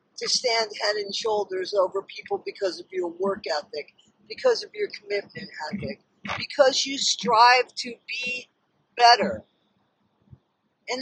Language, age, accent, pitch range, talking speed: English, 50-69, American, 190-285 Hz, 130 wpm